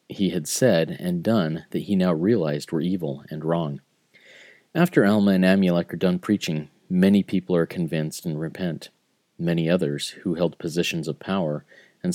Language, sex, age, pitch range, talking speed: English, male, 40-59, 80-105 Hz, 170 wpm